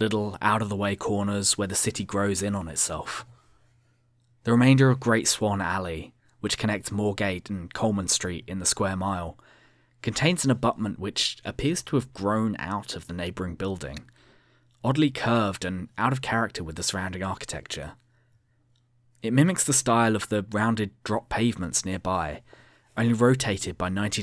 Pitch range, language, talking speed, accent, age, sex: 100-120 Hz, English, 155 wpm, British, 20-39, male